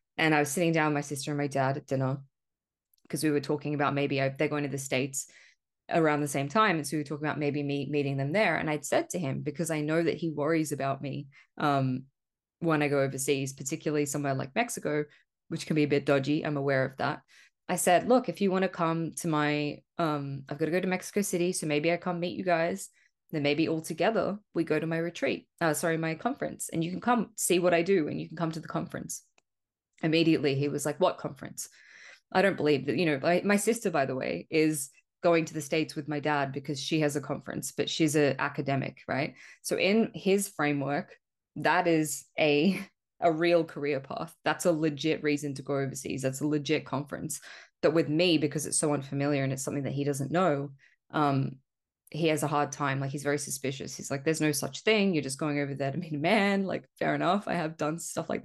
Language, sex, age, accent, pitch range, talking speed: English, female, 20-39, Australian, 145-170 Hz, 235 wpm